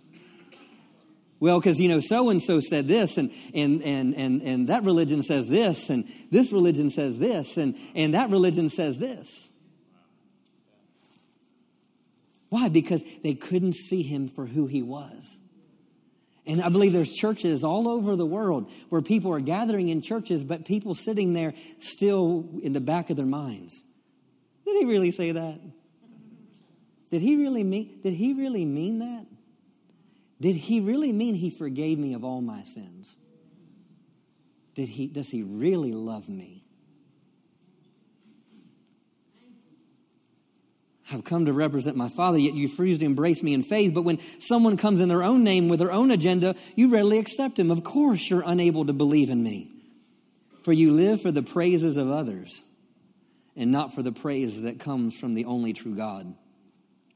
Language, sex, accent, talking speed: English, male, American, 160 wpm